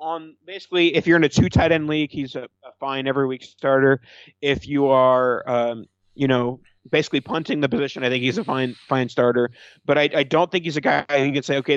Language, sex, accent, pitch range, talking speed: English, male, American, 125-145 Hz, 235 wpm